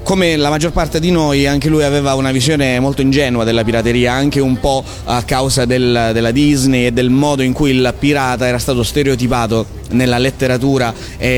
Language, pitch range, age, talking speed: Italian, 125-150 Hz, 30-49, 185 wpm